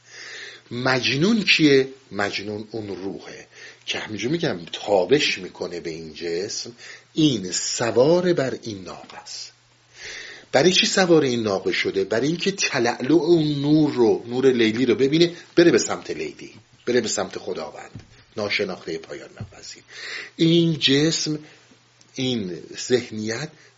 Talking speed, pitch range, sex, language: 125 wpm, 115-170 Hz, male, Persian